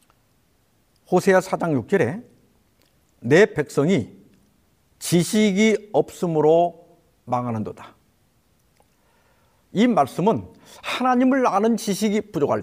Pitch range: 150-230 Hz